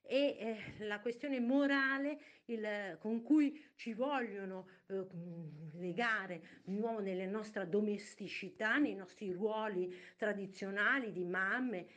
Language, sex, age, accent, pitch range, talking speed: Italian, female, 50-69, native, 185-250 Hz, 115 wpm